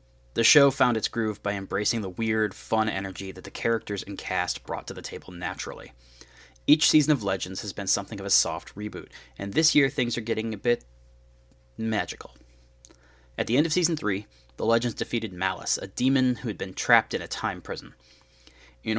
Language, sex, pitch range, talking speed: English, male, 95-115 Hz, 195 wpm